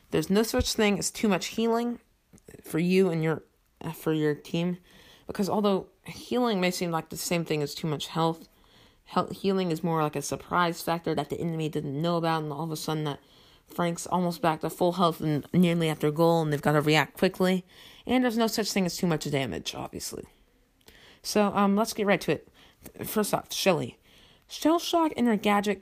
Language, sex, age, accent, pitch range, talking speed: English, female, 30-49, American, 150-205 Hz, 205 wpm